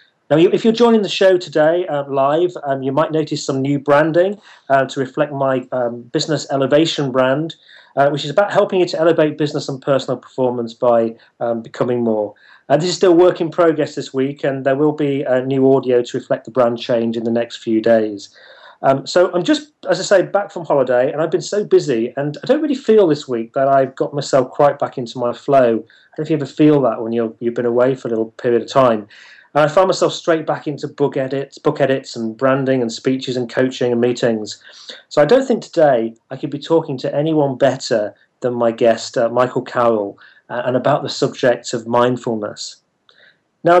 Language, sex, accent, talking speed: English, male, British, 220 wpm